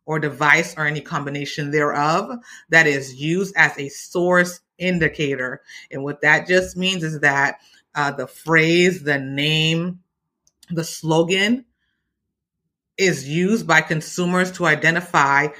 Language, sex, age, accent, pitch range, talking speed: English, female, 30-49, American, 145-170 Hz, 125 wpm